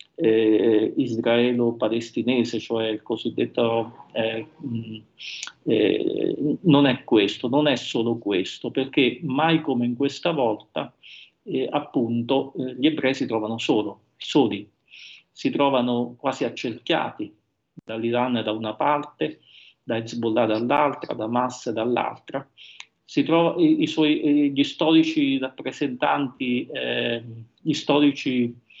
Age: 50-69